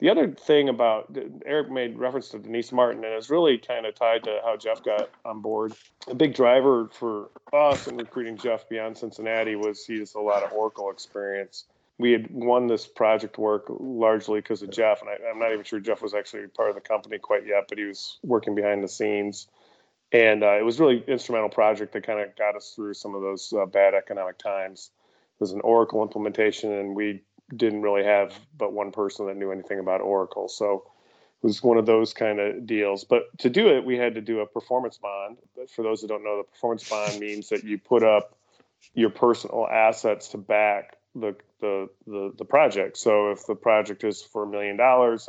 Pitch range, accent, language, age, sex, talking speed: 100-115 Hz, American, English, 30-49, male, 215 wpm